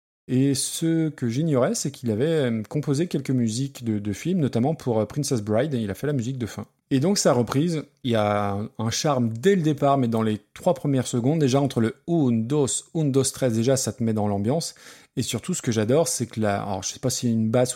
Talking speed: 245 wpm